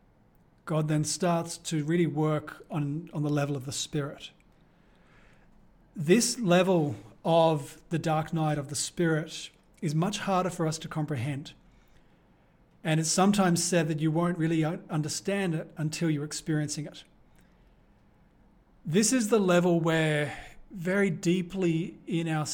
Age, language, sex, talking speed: 40-59, English, male, 140 wpm